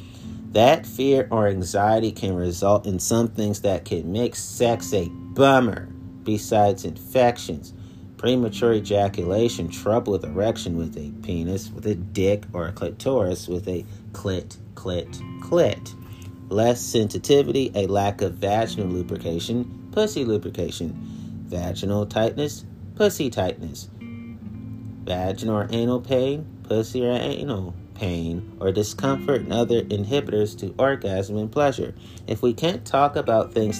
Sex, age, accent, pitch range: male, 30-49, American, 90-115 Hz